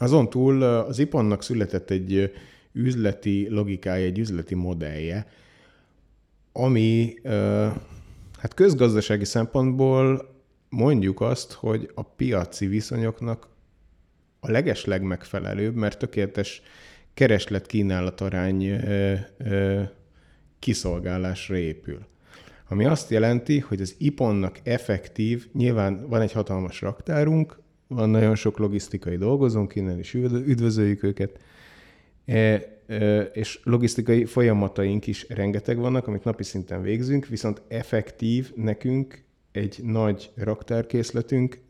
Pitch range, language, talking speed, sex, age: 100-120 Hz, Hungarian, 95 wpm, male, 30-49